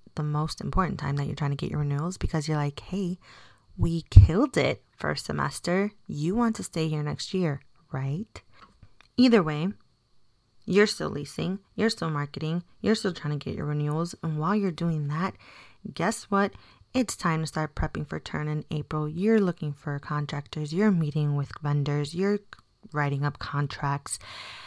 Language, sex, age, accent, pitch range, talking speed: English, female, 20-39, American, 145-190 Hz, 175 wpm